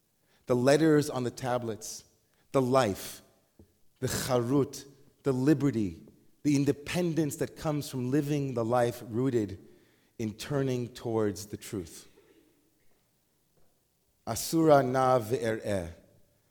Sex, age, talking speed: male, 40-59, 100 wpm